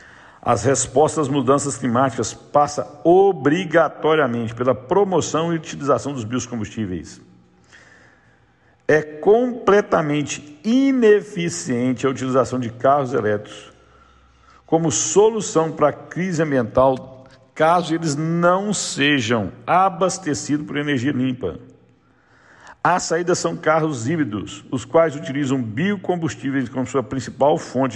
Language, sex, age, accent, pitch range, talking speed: Portuguese, male, 60-79, Brazilian, 120-160 Hz, 105 wpm